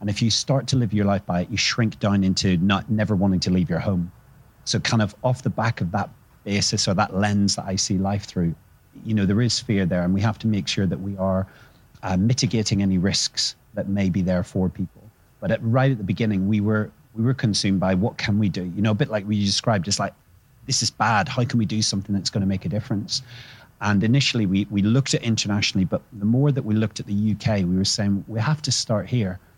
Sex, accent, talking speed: male, British, 255 wpm